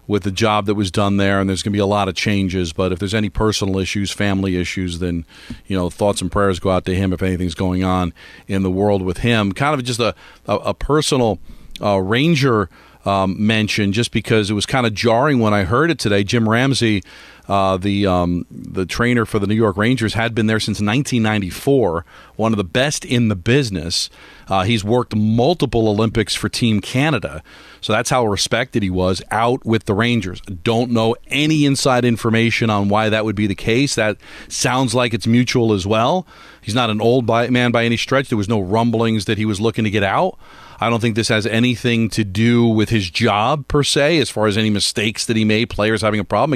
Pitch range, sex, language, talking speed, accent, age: 100-120 Hz, male, English, 215 wpm, American, 40-59